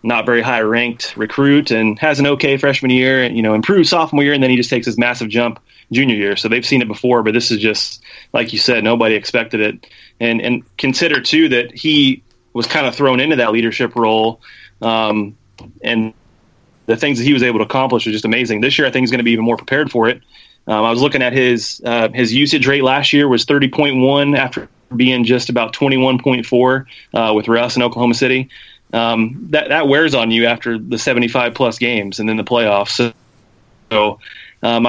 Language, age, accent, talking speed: English, 30-49, American, 215 wpm